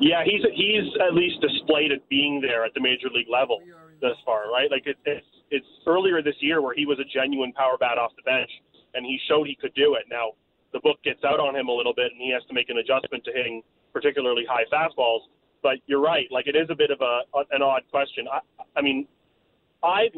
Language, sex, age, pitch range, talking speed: English, male, 30-49, 130-175 Hz, 240 wpm